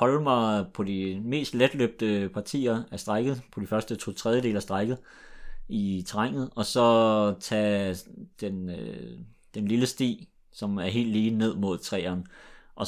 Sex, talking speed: male, 160 wpm